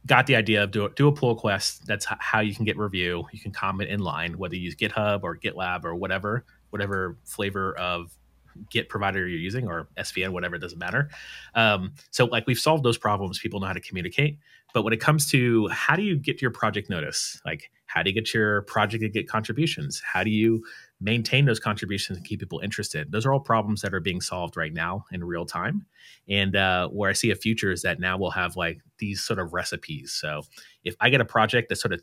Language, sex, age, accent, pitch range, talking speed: English, male, 30-49, American, 90-115 Hz, 230 wpm